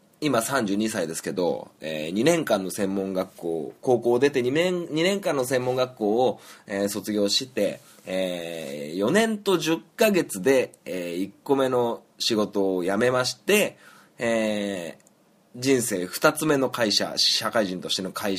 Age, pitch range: 20-39, 105-145 Hz